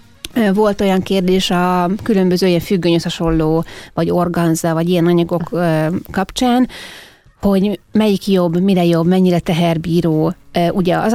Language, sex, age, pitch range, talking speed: Hungarian, female, 30-49, 165-195 Hz, 120 wpm